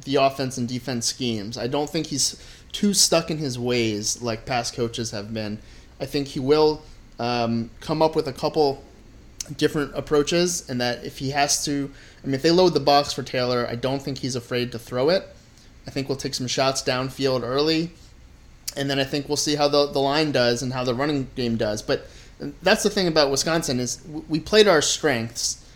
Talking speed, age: 210 wpm, 30-49